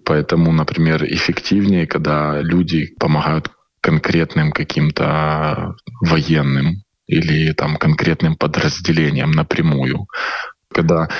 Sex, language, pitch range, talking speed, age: male, Russian, 75-85 Hz, 80 wpm, 20-39